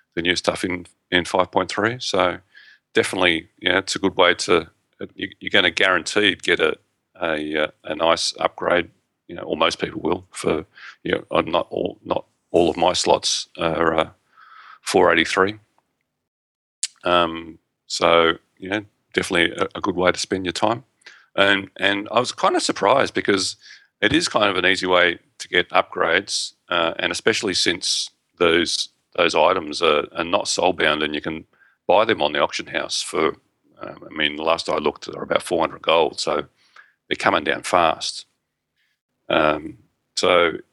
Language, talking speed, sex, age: English, 170 wpm, male, 30-49